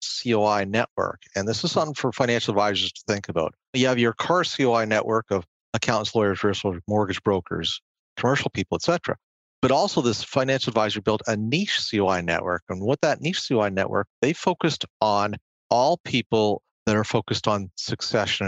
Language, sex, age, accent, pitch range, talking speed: English, male, 50-69, American, 100-120 Hz, 170 wpm